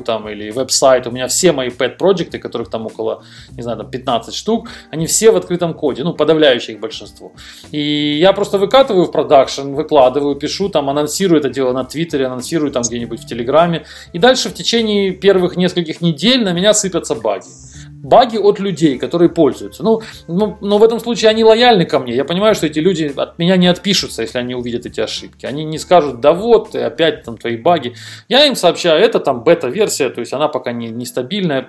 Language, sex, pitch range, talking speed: Ukrainian, male, 130-190 Hz, 190 wpm